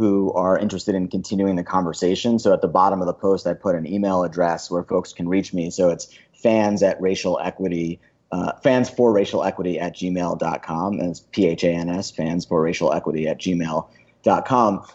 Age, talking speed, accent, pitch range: 30-49, 200 wpm, American, 95-115 Hz